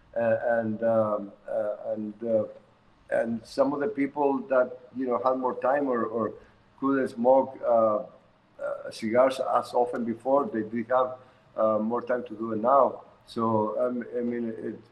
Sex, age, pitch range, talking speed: male, 50-69, 115-135 Hz, 165 wpm